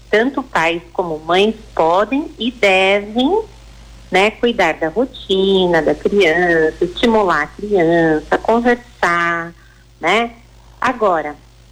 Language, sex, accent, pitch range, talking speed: Portuguese, female, Brazilian, 160-220 Hz, 95 wpm